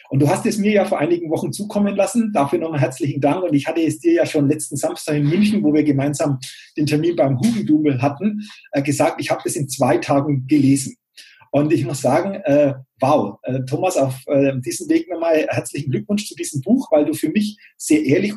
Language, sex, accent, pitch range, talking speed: German, male, German, 145-210 Hz, 220 wpm